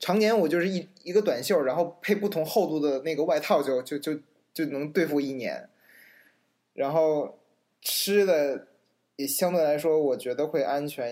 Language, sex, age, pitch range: Chinese, male, 20-39, 145-205 Hz